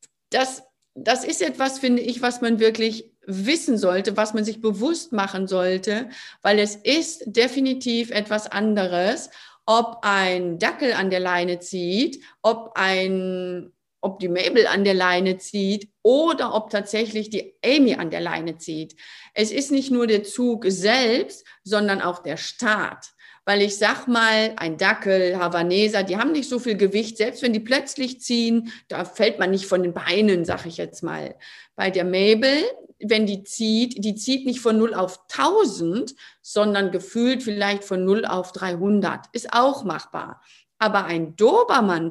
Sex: female